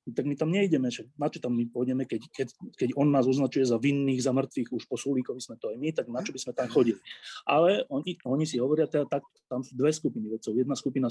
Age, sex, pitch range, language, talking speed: 30-49, male, 120-140 Hz, Slovak, 230 wpm